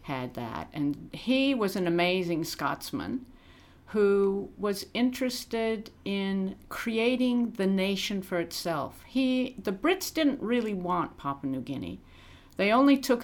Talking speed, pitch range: 130 wpm, 150-205 Hz